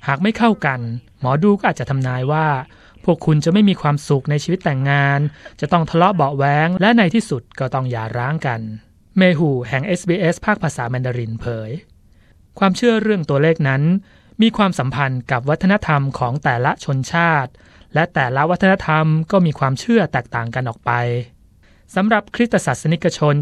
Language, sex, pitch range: Thai, male, 125-180 Hz